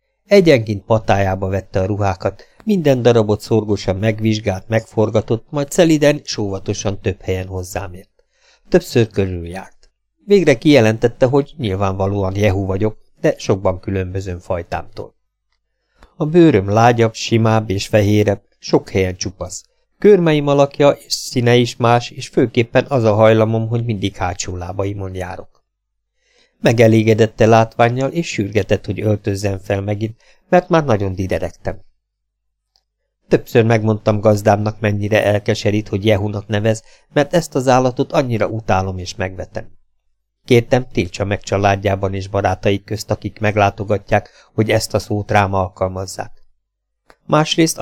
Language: Hungarian